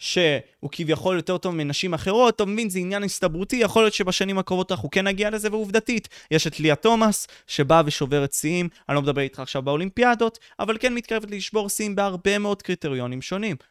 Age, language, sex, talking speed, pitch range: 20-39, Hebrew, male, 185 wpm, 145-200 Hz